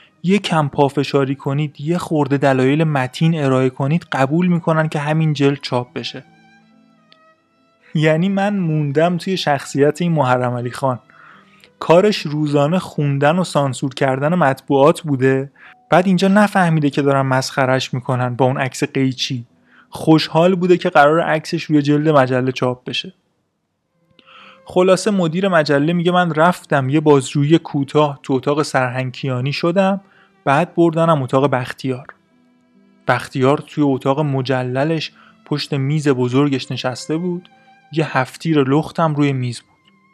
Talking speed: 135 wpm